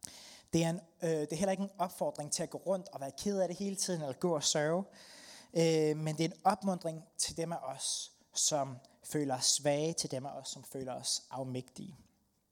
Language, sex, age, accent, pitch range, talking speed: Danish, male, 30-49, native, 140-175 Hz, 225 wpm